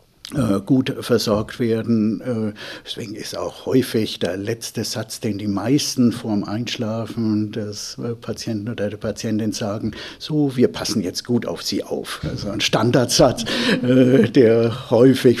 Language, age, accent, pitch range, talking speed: German, 60-79, German, 110-145 Hz, 130 wpm